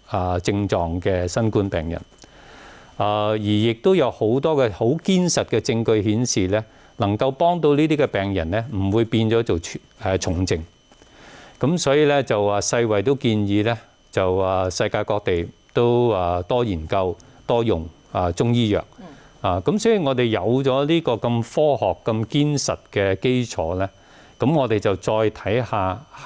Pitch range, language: 95-120 Hz, English